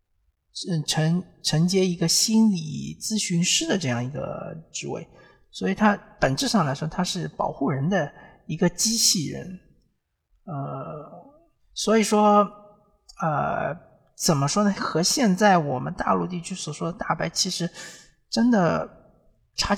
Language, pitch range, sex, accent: Chinese, 140-195 Hz, male, native